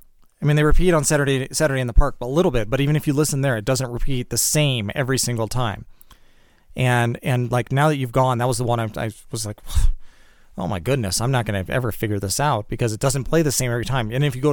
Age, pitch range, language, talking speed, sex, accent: 30-49, 115-140 Hz, English, 275 wpm, male, American